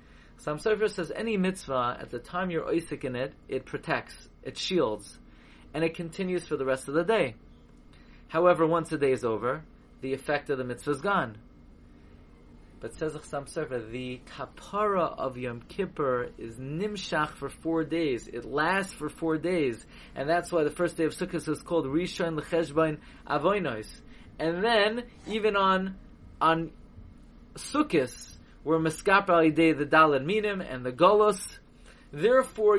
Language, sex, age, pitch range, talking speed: English, male, 30-49, 145-200 Hz, 155 wpm